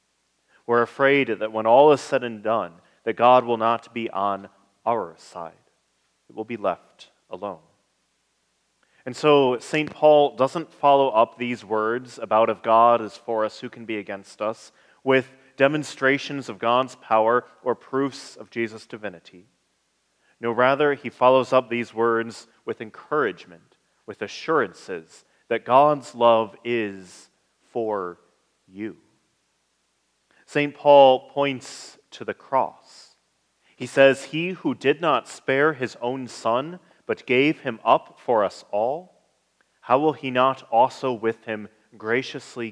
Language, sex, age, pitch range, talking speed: English, male, 30-49, 105-135 Hz, 140 wpm